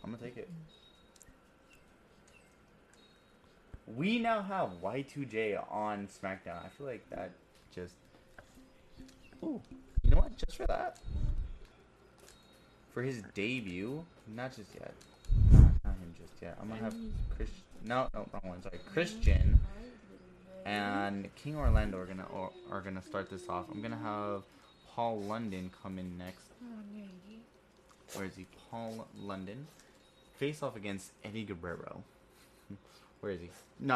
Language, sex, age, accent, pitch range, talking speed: English, male, 20-39, American, 95-120 Hz, 130 wpm